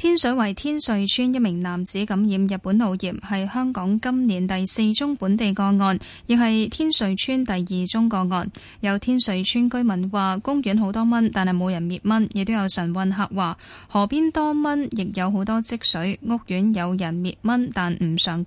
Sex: female